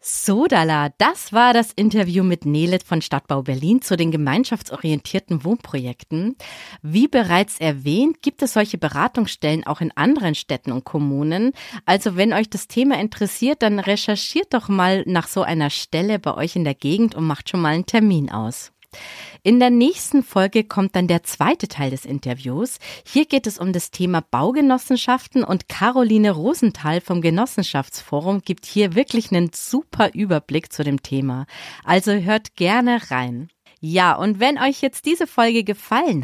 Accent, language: German, German